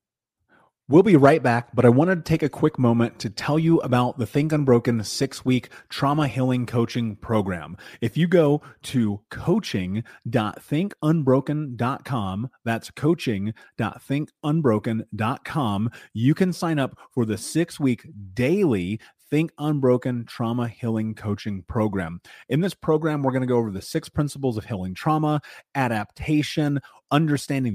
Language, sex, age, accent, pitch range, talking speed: English, male, 30-49, American, 115-150 Hz, 130 wpm